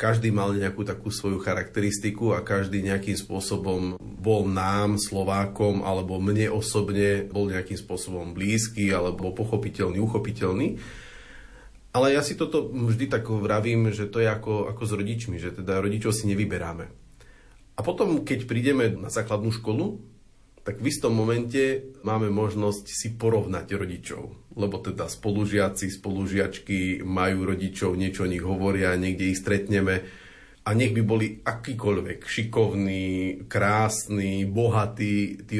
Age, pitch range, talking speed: 40-59, 95-110 Hz, 135 wpm